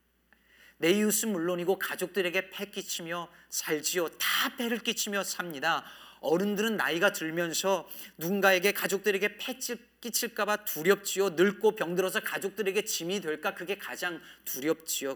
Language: Korean